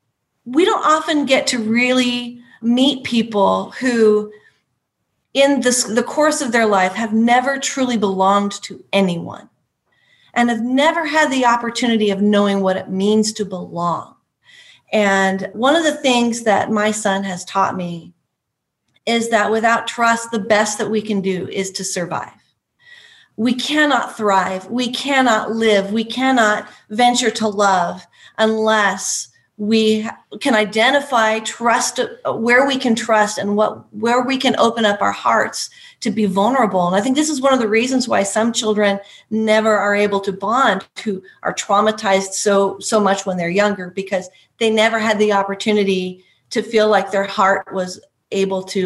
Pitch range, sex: 195-240 Hz, female